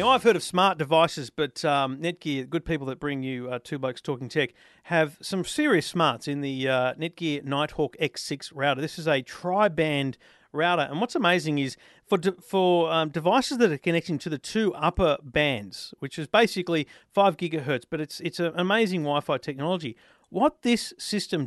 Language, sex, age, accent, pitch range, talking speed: English, male, 40-59, Australian, 140-175 Hz, 185 wpm